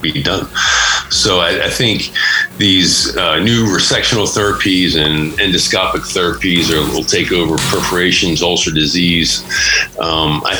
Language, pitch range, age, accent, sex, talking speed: English, 80-105 Hz, 50-69, American, male, 130 wpm